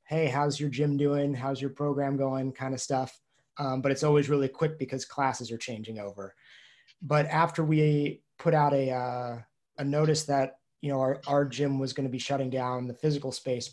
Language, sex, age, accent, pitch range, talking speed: English, male, 20-39, American, 130-150 Hz, 200 wpm